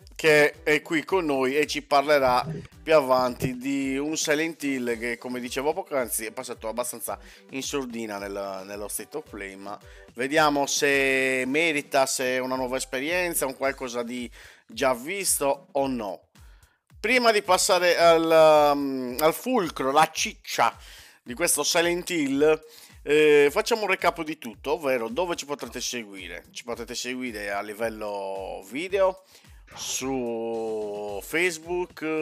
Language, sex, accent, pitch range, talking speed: Italian, male, native, 120-160 Hz, 140 wpm